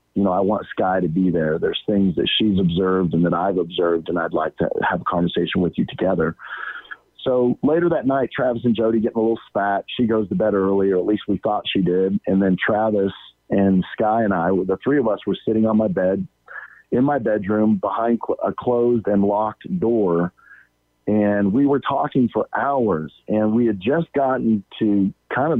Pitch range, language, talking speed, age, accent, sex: 95-145 Hz, English, 210 wpm, 40-59, American, male